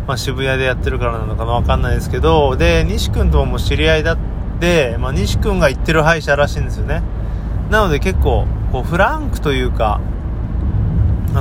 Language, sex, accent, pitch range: Japanese, male, native, 95-150 Hz